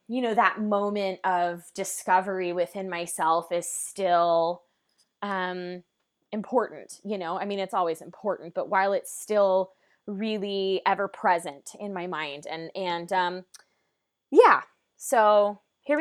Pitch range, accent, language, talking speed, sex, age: 180-225 Hz, American, English, 125 wpm, female, 20-39